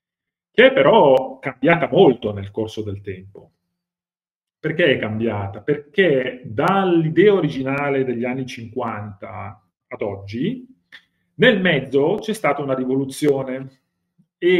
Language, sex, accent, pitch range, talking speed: Italian, male, native, 110-150 Hz, 110 wpm